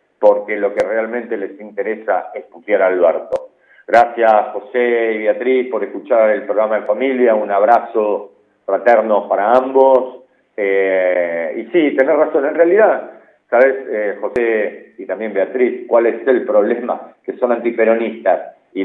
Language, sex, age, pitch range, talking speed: Spanish, male, 50-69, 110-140 Hz, 150 wpm